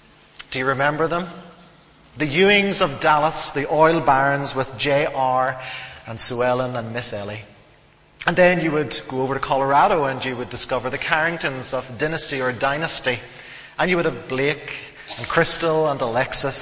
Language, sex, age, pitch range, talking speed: English, male, 30-49, 125-160 Hz, 165 wpm